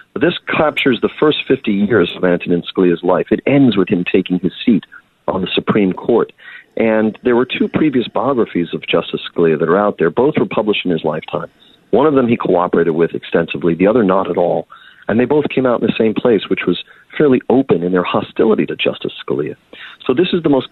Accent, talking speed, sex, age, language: American, 220 wpm, male, 40-59, English